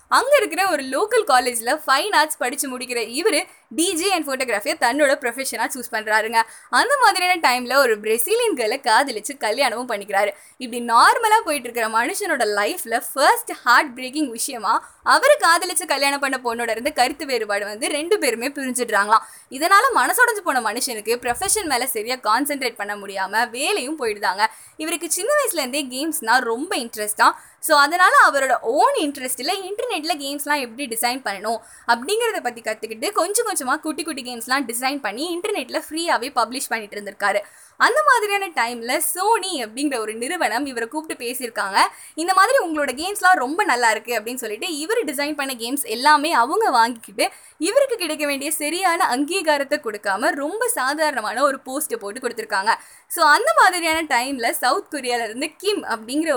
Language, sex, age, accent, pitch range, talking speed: Tamil, female, 20-39, native, 235-325 Hz, 145 wpm